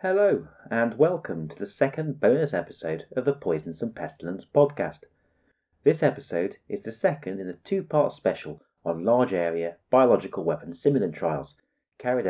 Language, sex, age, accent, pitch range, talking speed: English, male, 30-49, British, 85-140 Hz, 145 wpm